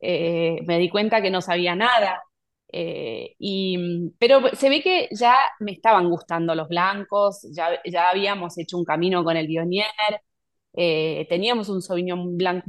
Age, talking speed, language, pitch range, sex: 20-39, 160 wpm, Spanish, 170-215 Hz, female